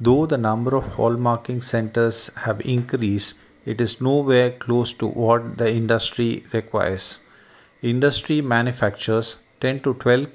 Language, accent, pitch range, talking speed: English, Indian, 115-130 Hz, 130 wpm